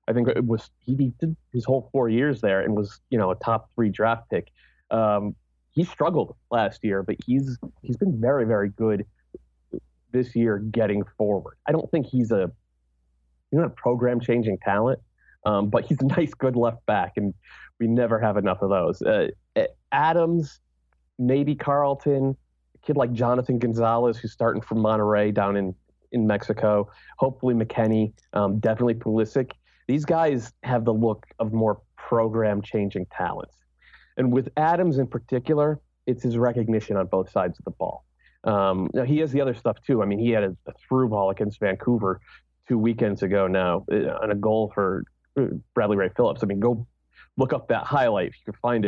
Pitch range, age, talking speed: 100-125 Hz, 30-49, 185 wpm